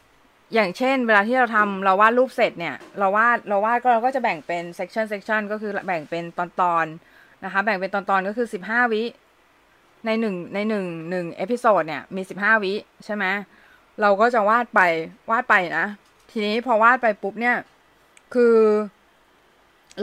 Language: Thai